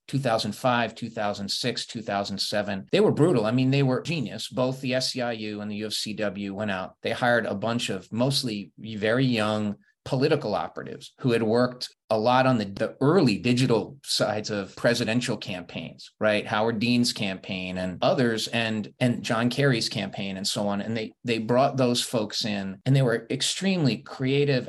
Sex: male